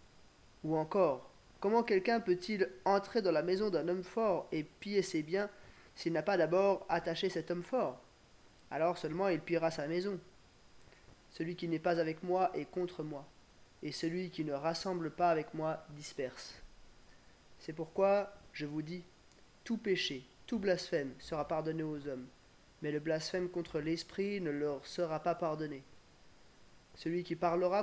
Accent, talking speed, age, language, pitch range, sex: French, 160 wpm, 20-39, French, 155-185 Hz, male